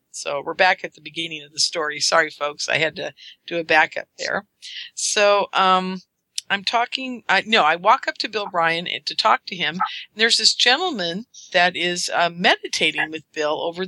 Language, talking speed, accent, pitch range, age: English, 195 wpm, American, 170-220 Hz, 50-69